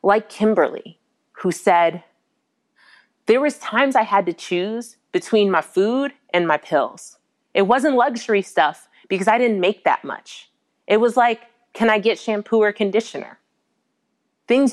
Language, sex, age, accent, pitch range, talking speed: English, female, 30-49, American, 175-250 Hz, 150 wpm